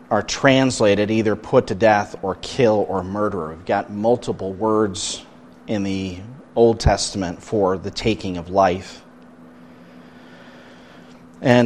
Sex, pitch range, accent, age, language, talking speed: male, 105-125 Hz, American, 40-59, English, 125 wpm